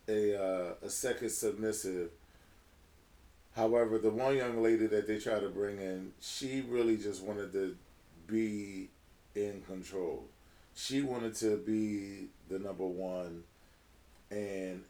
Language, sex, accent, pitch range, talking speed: English, male, American, 90-110 Hz, 130 wpm